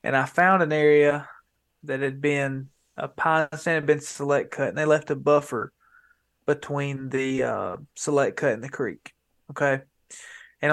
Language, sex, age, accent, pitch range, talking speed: English, male, 20-39, American, 140-160 Hz, 170 wpm